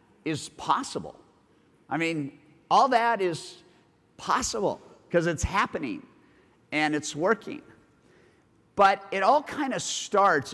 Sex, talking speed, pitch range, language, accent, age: male, 115 wpm, 150-180 Hz, English, American, 50-69